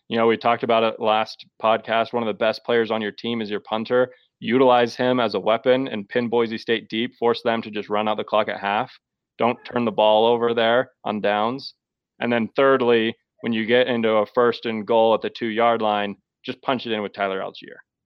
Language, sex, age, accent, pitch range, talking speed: English, male, 20-39, American, 110-120 Hz, 230 wpm